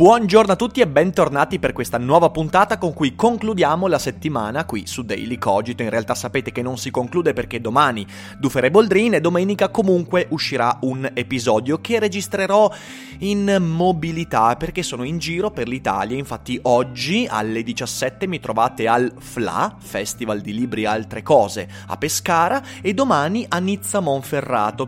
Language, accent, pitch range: Italian, native, 115-170 Hz